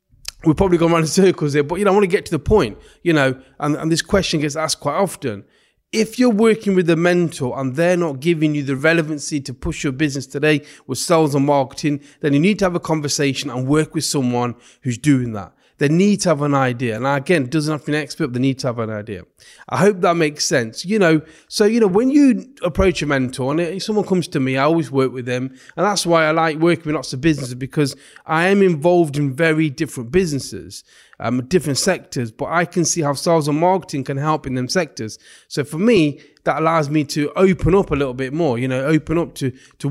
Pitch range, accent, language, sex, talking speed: 135-170 Hz, British, English, male, 245 wpm